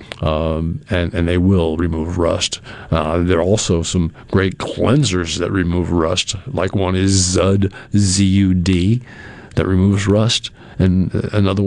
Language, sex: English, male